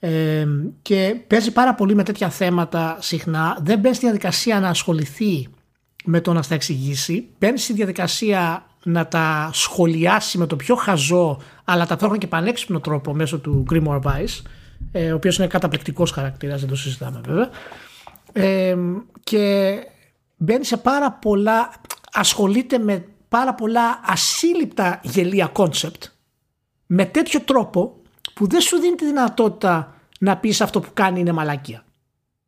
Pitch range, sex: 160-225 Hz, male